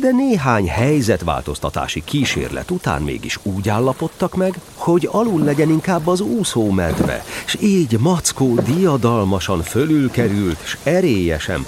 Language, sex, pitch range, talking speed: Hungarian, male, 90-135 Hz, 120 wpm